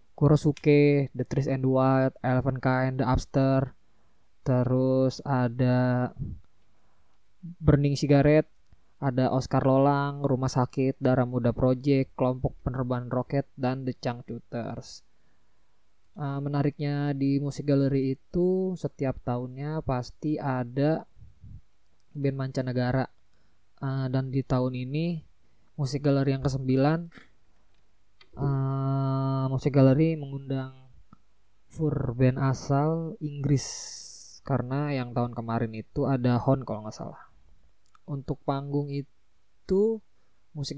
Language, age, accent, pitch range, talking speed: Indonesian, 20-39, native, 120-140 Hz, 105 wpm